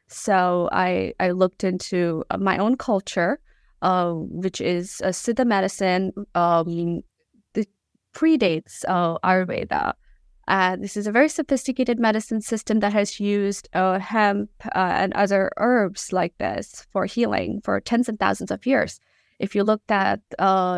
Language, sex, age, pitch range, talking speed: English, female, 20-39, 185-220 Hz, 145 wpm